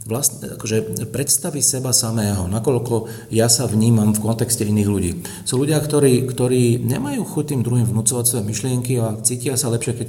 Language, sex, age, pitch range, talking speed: Slovak, male, 40-59, 105-125 Hz, 170 wpm